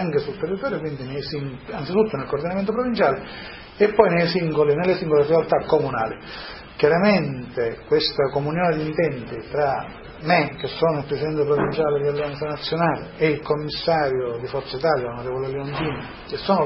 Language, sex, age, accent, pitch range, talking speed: Italian, male, 40-59, native, 140-195 Hz, 135 wpm